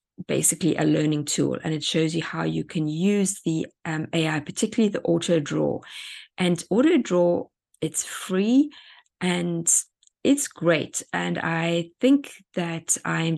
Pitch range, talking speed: 155-190 Hz, 135 wpm